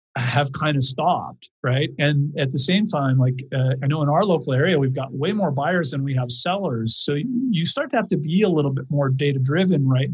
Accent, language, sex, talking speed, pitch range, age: American, English, male, 245 wpm, 135-180 Hz, 50-69